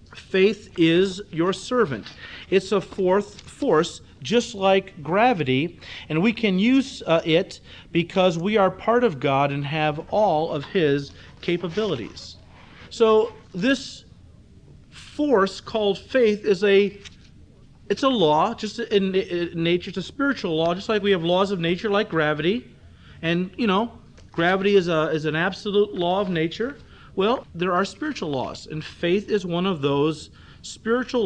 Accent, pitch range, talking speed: American, 160-205 Hz, 155 wpm